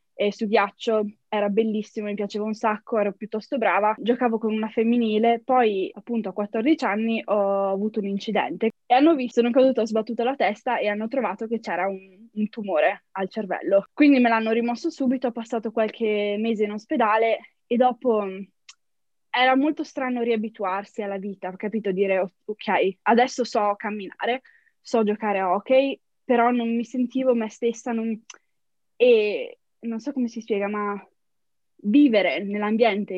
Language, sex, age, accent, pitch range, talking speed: Italian, female, 20-39, native, 210-245 Hz, 160 wpm